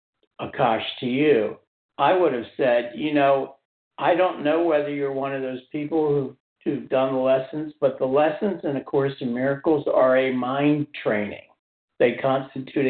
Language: English